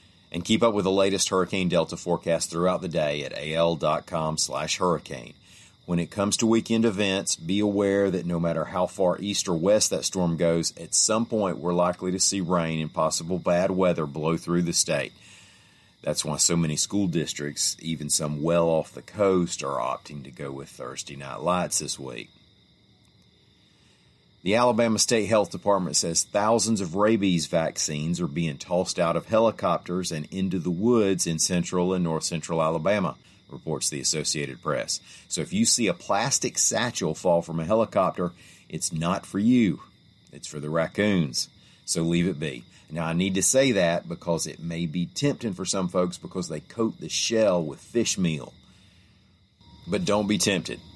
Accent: American